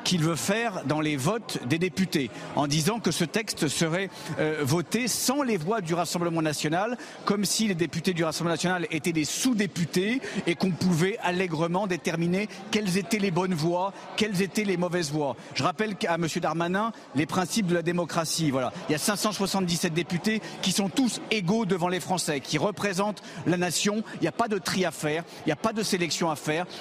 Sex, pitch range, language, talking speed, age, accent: male, 165-195 Hz, French, 200 wpm, 50-69, French